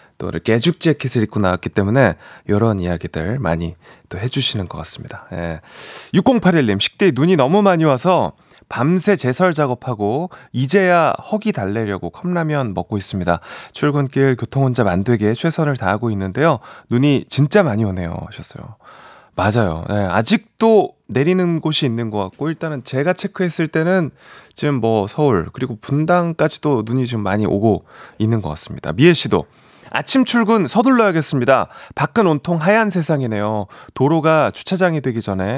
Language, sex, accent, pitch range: Korean, male, native, 110-175 Hz